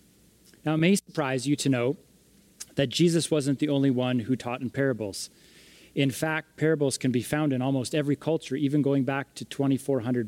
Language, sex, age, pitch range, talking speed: English, male, 30-49, 125-150 Hz, 185 wpm